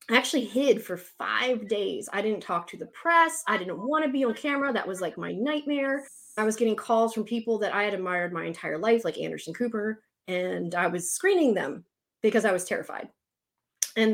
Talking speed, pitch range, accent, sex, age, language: 210 wpm, 190-255 Hz, American, female, 30-49, English